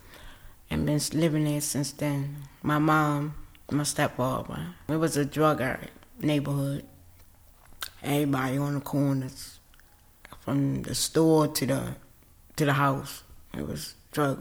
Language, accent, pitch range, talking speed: English, American, 135-160 Hz, 135 wpm